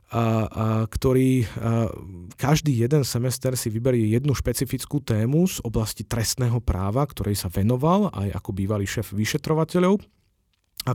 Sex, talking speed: male, 135 wpm